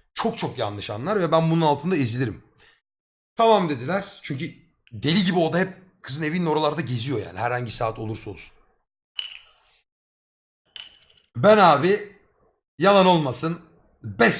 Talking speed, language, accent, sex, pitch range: 130 wpm, Turkish, native, male, 125-200 Hz